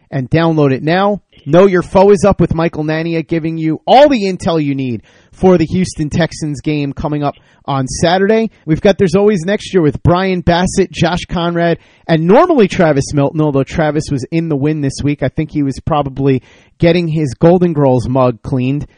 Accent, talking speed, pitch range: American, 195 wpm, 140-175 Hz